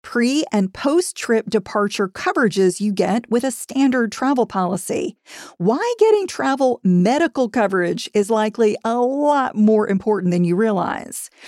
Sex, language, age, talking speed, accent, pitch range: female, English, 40-59, 135 wpm, American, 200-260 Hz